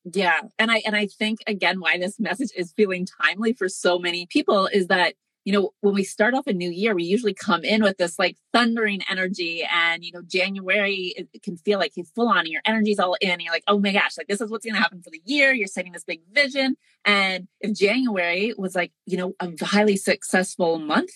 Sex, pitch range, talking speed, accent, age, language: female, 175-220 Hz, 235 wpm, American, 30-49, English